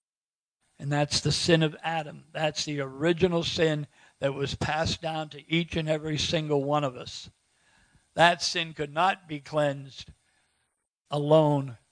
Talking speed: 145 wpm